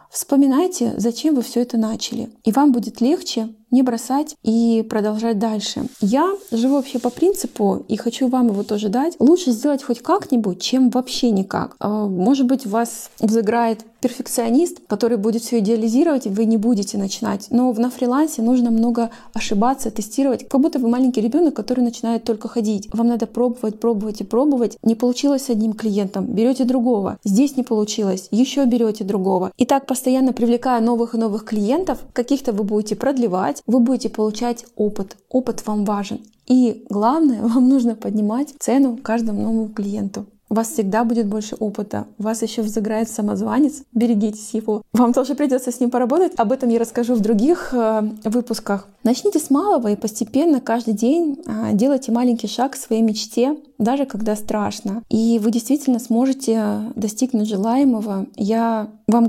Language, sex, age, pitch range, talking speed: Russian, female, 20-39, 220-255 Hz, 160 wpm